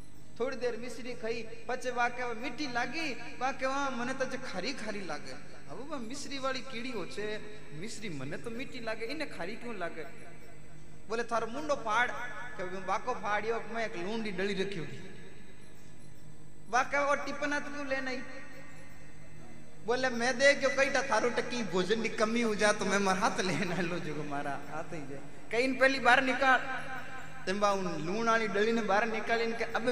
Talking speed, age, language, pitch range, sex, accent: 80 wpm, 20-39, Hindi, 185-245 Hz, male, native